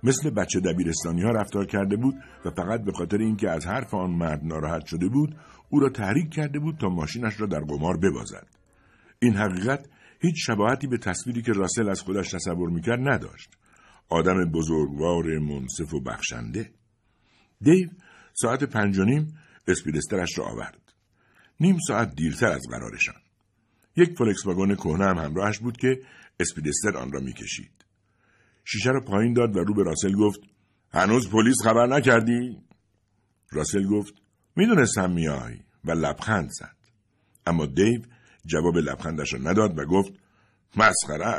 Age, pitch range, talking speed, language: 60-79, 90-115 Hz, 145 wpm, Persian